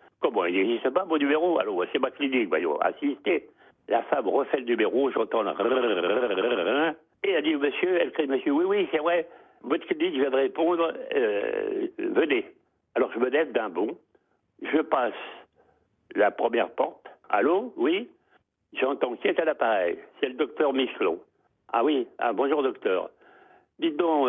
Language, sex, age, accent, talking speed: French, male, 60-79, French, 165 wpm